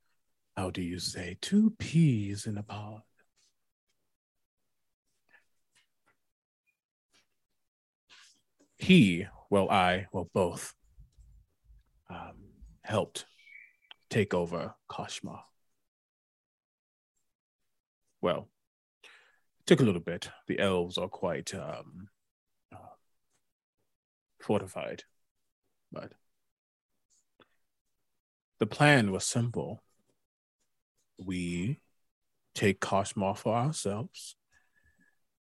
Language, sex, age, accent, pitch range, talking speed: English, male, 30-49, American, 95-120 Hz, 70 wpm